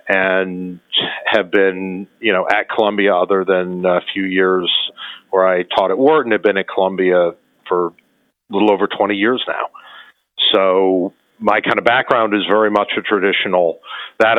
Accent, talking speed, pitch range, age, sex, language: American, 165 wpm, 95-115 Hz, 50-69, male, English